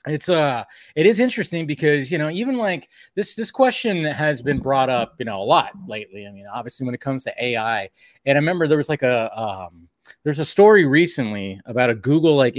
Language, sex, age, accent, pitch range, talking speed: English, male, 20-39, American, 125-160 Hz, 220 wpm